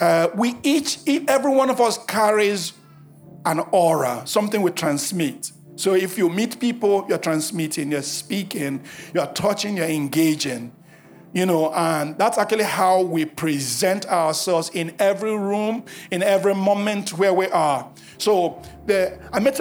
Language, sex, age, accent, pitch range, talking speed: English, male, 50-69, Nigerian, 155-200 Hz, 145 wpm